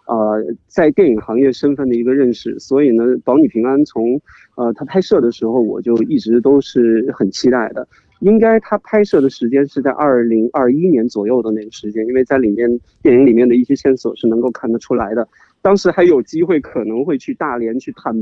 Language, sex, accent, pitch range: Chinese, male, native, 120-185 Hz